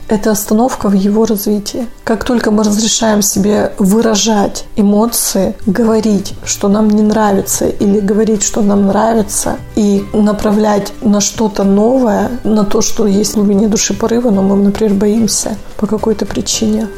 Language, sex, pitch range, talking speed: Russian, female, 210-230 Hz, 145 wpm